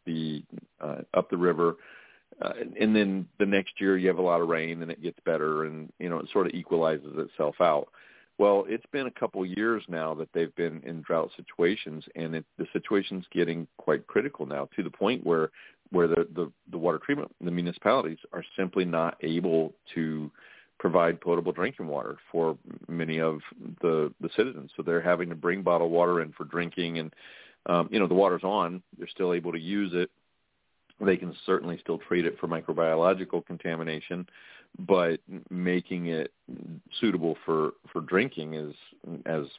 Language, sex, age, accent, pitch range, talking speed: English, male, 40-59, American, 80-95 Hz, 180 wpm